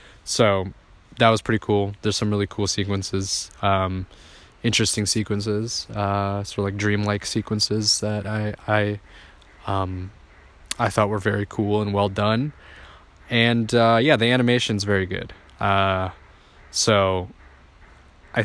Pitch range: 95-115 Hz